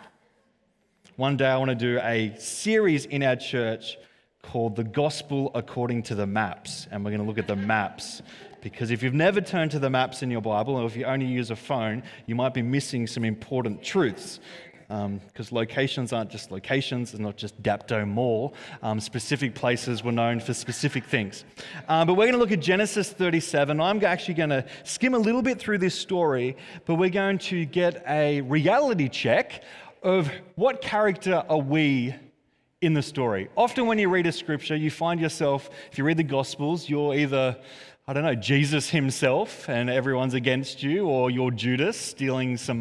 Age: 20-39